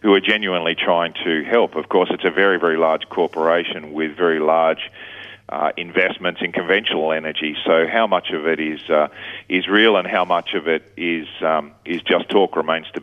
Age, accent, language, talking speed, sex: 40-59, Australian, English, 200 wpm, male